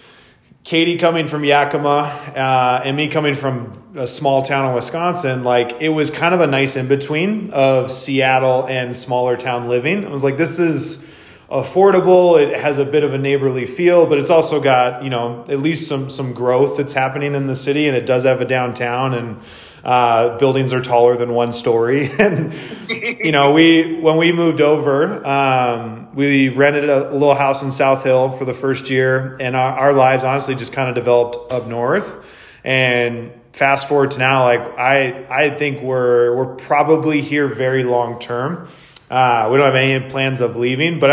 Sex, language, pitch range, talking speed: male, English, 125-145 Hz, 195 wpm